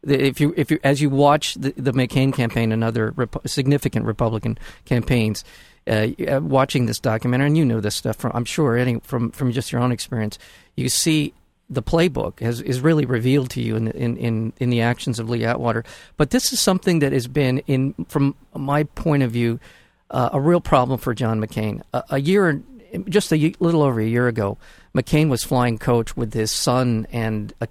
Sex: male